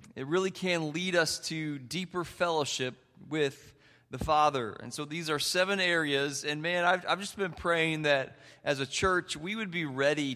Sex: male